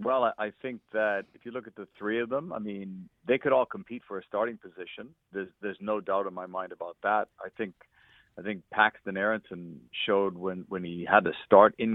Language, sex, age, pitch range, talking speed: English, male, 50-69, 95-120 Hz, 225 wpm